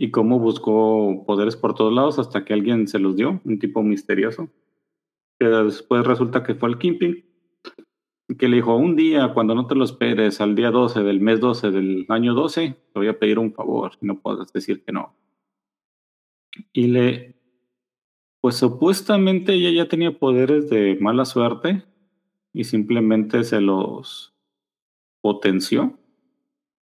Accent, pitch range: Mexican, 105-145 Hz